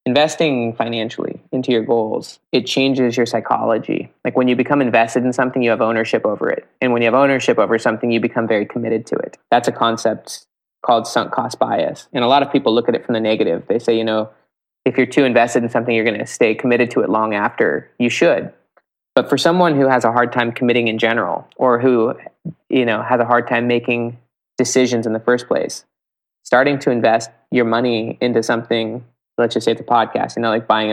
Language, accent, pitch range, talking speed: English, American, 115-125 Hz, 225 wpm